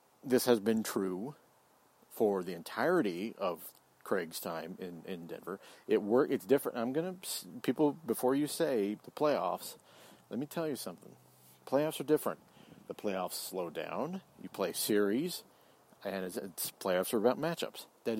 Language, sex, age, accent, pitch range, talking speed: English, male, 50-69, American, 95-120 Hz, 160 wpm